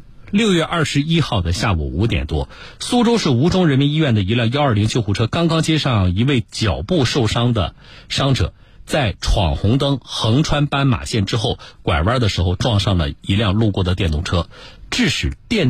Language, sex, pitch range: Chinese, male, 95-140 Hz